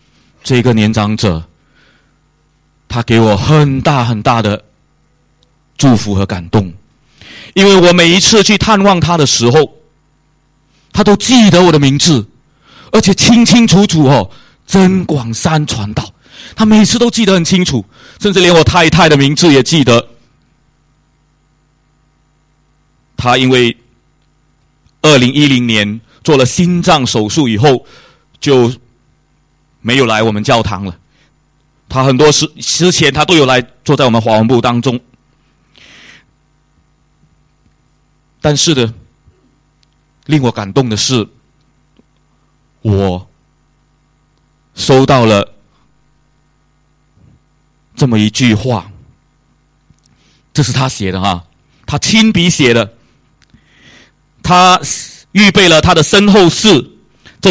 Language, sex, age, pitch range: English, male, 30-49, 115-170 Hz